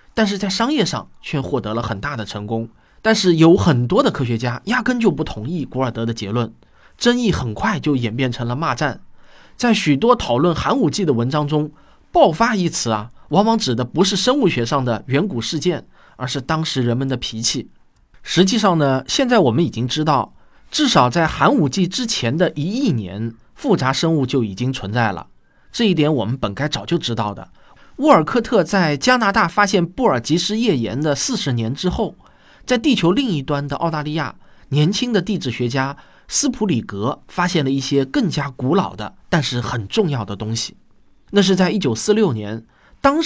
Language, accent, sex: Chinese, native, male